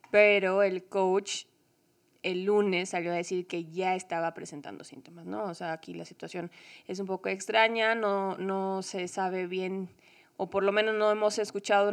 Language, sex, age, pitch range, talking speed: Spanish, female, 20-39, 175-200 Hz, 175 wpm